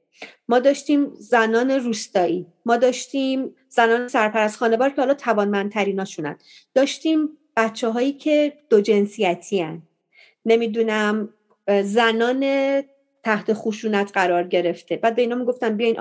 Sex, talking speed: female, 110 wpm